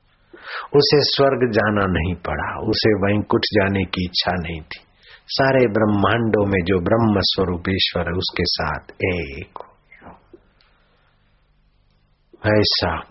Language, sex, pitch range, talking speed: Hindi, male, 90-110 Hz, 105 wpm